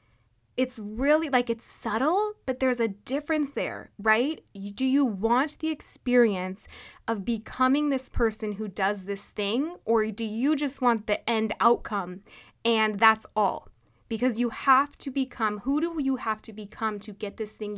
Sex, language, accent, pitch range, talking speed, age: female, English, American, 210-270 Hz, 170 wpm, 20-39